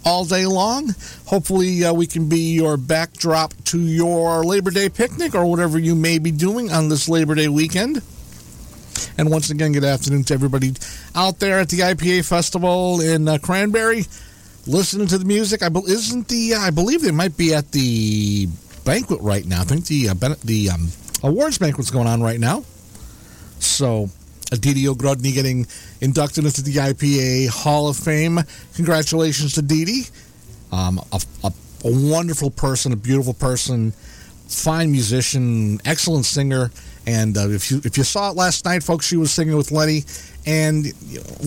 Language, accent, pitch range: English, American, 120-170 Hz